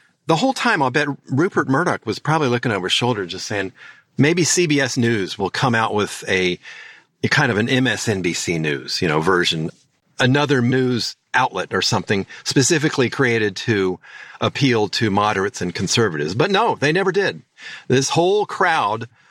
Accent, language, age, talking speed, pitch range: American, English, 40-59, 165 wpm, 100-135 Hz